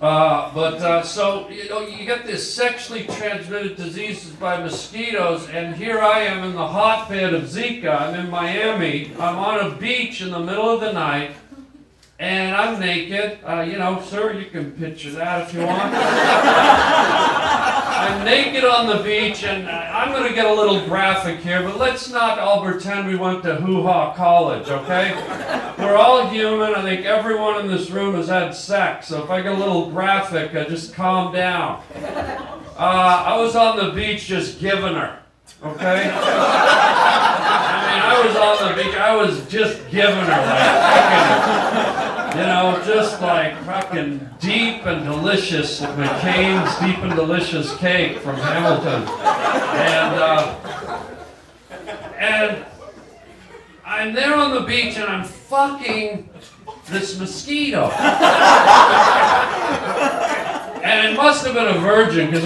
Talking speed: 150 wpm